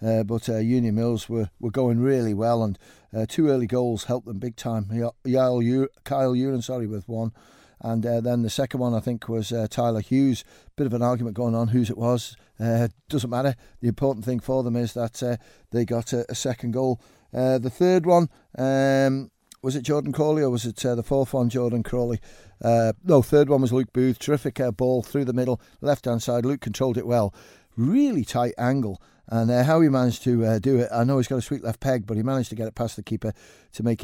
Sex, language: male, English